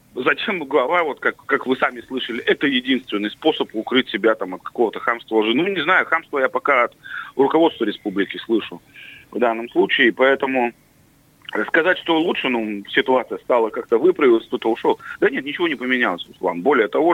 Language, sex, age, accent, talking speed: Russian, male, 30-49, native, 170 wpm